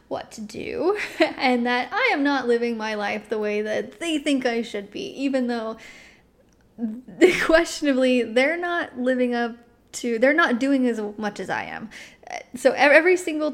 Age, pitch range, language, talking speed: 10-29, 220-275 Hz, English, 170 wpm